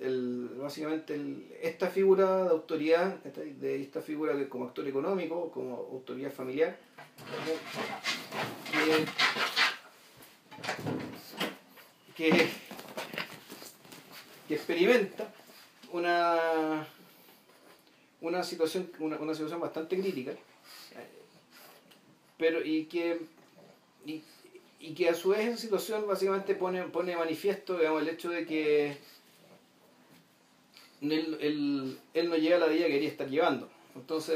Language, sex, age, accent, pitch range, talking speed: Spanish, male, 40-59, Argentinian, 150-185 Hz, 110 wpm